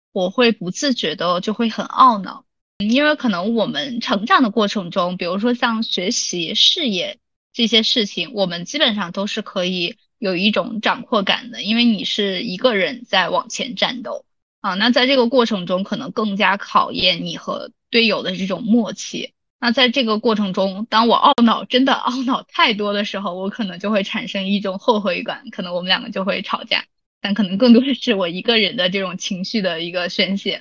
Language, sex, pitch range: Chinese, female, 195-245 Hz